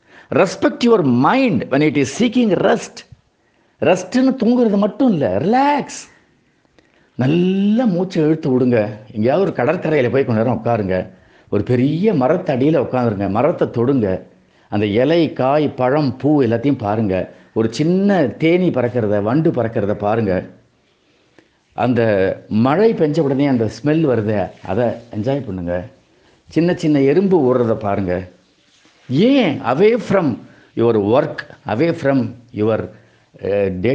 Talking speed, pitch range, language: 120 wpm, 105-160 Hz, Tamil